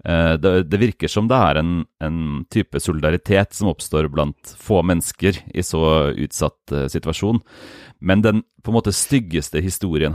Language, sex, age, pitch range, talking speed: English, male, 30-49, 80-100 Hz, 165 wpm